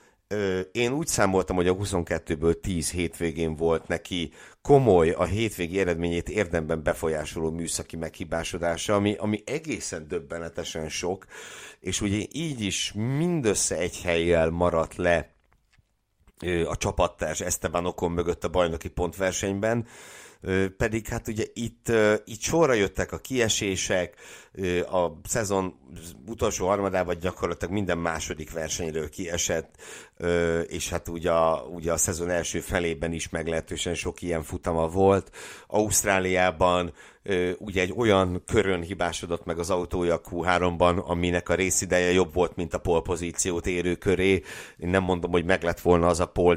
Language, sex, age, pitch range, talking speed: Hungarian, male, 60-79, 85-95 Hz, 135 wpm